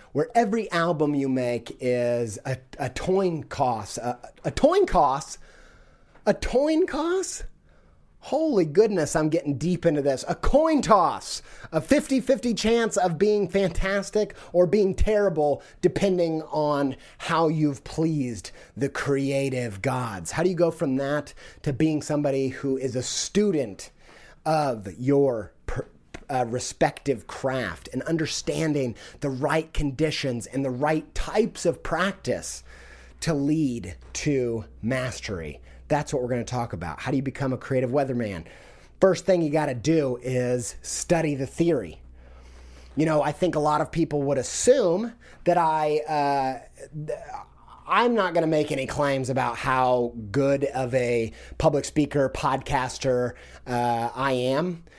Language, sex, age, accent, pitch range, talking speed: English, male, 30-49, American, 130-170 Hz, 145 wpm